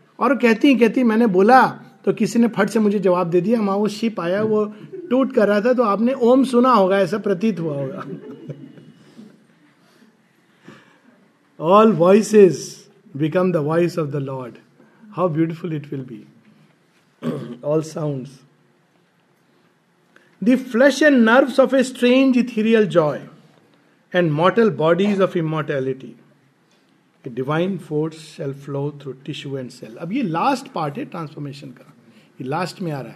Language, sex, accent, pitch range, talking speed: Hindi, male, native, 155-215 Hz, 150 wpm